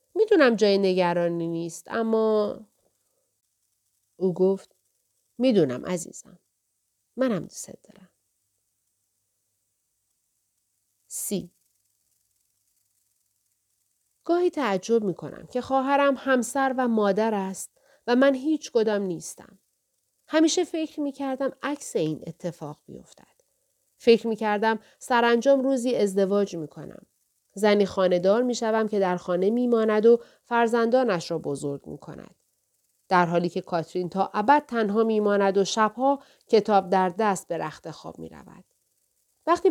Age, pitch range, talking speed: 40-59, 170-240 Hz, 115 wpm